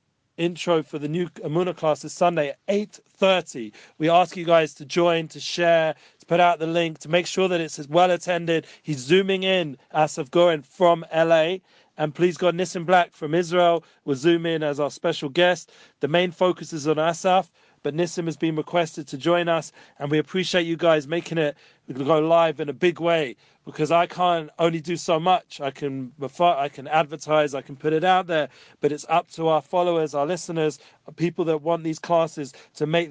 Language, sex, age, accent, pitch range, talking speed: English, male, 40-59, British, 150-175 Hz, 205 wpm